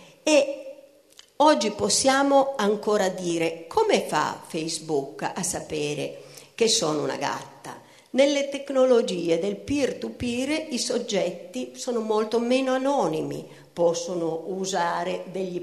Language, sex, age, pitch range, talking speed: Italian, female, 50-69, 180-280 Hz, 105 wpm